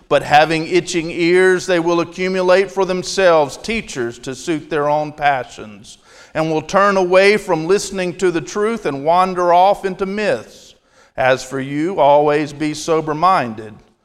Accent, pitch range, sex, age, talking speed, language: American, 140-180 Hz, male, 50-69, 155 wpm, English